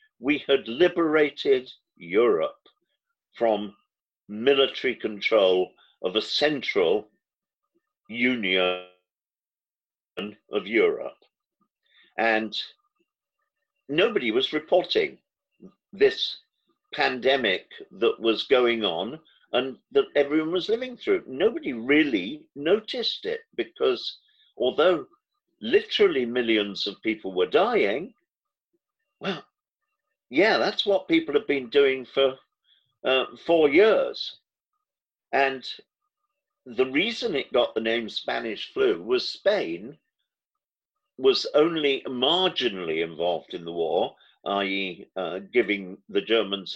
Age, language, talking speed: 50-69, English, 95 wpm